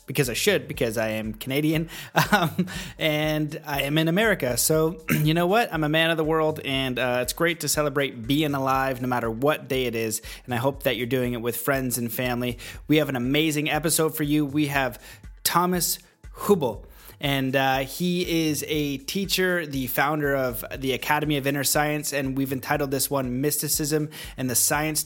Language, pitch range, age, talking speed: English, 135-155 Hz, 30-49, 195 wpm